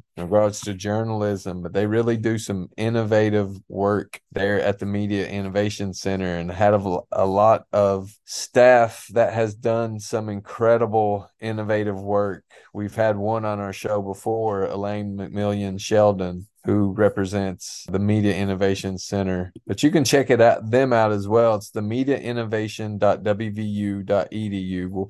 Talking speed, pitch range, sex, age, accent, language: 140 wpm, 100-110 Hz, male, 30-49, American, English